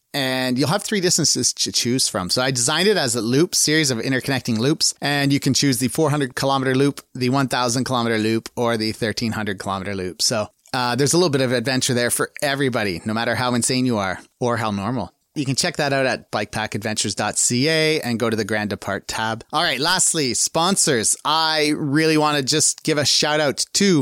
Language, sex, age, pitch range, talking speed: English, male, 30-49, 120-145 Hz, 200 wpm